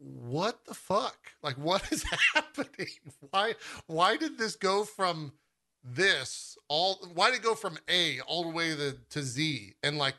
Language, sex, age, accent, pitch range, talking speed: English, male, 40-59, American, 125-160 Hz, 170 wpm